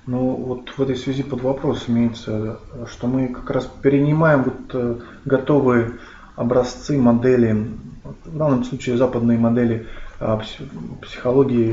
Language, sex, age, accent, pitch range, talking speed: Russian, male, 20-39, native, 115-130 Hz, 130 wpm